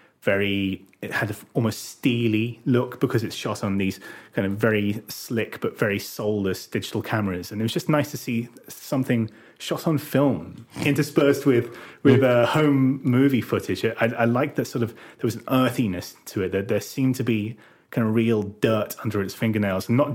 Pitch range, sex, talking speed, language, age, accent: 105-130 Hz, male, 200 wpm, English, 30-49, British